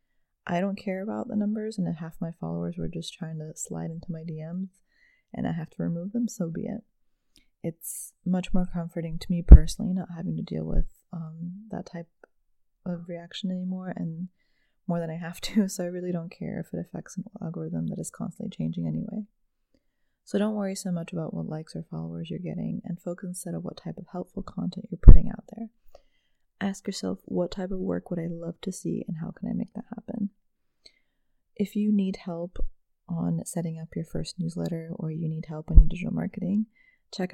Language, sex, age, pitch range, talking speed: English, female, 20-39, 165-195 Hz, 205 wpm